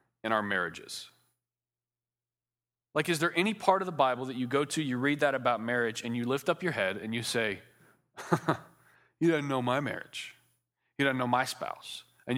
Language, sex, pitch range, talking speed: English, male, 95-135 Hz, 195 wpm